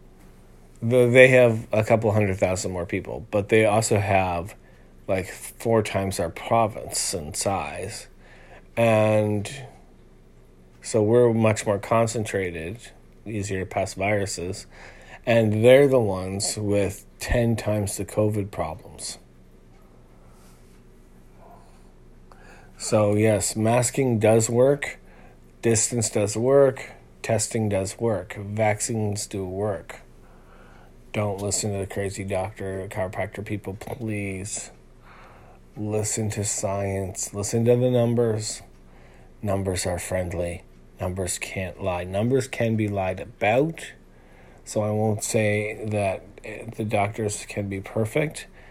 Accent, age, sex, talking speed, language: American, 30-49, male, 110 wpm, English